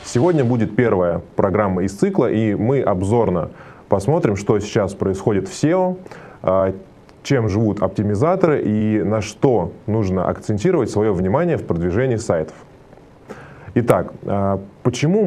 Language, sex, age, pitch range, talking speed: Russian, male, 20-39, 95-120 Hz, 120 wpm